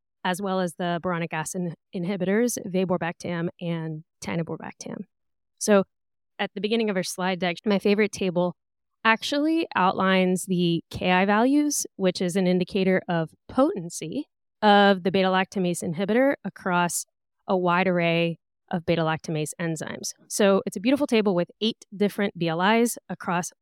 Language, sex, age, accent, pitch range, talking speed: English, female, 20-39, American, 170-205 Hz, 135 wpm